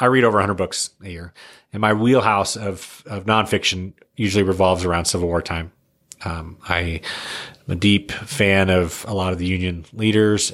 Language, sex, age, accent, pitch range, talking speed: English, male, 30-49, American, 95-115 Hz, 180 wpm